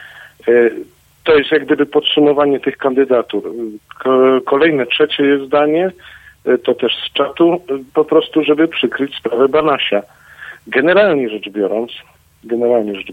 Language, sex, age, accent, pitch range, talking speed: Polish, male, 50-69, native, 125-150 Hz, 120 wpm